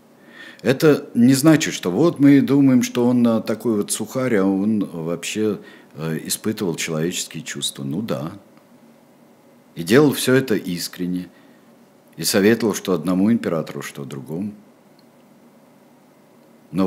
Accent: native